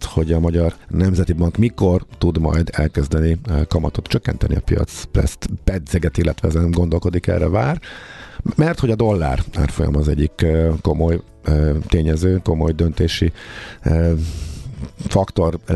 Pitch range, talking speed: 75-95 Hz, 120 wpm